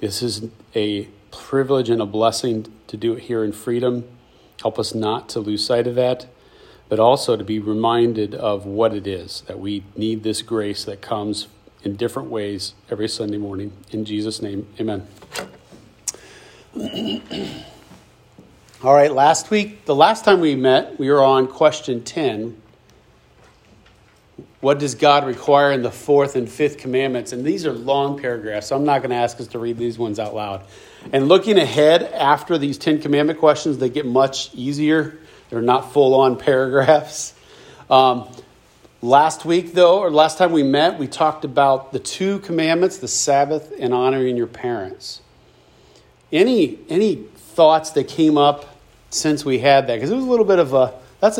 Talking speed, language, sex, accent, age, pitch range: 170 wpm, English, male, American, 40-59, 115-150 Hz